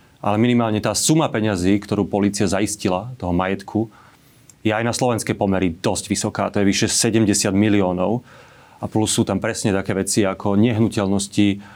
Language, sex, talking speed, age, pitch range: Slovak, male, 160 wpm, 30-49, 100-115 Hz